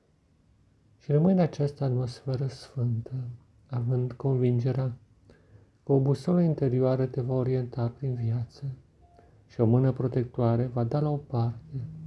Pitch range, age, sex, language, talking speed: 120-135 Hz, 50-69, male, Romanian, 120 wpm